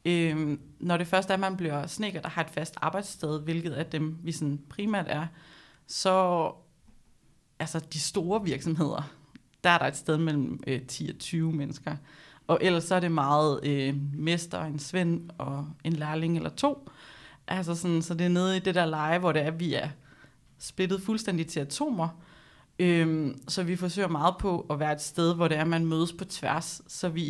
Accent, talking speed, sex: native, 200 wpm, female